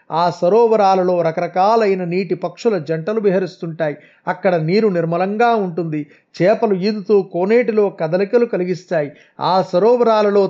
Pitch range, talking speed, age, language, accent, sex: 175-215 Hz, 105 wpm, 30-49, Telugu, native, male